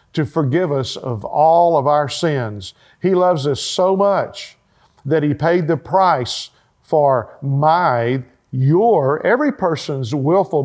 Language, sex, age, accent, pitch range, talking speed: English, male, 50-69, American, 125-155 Hz, 135 wpm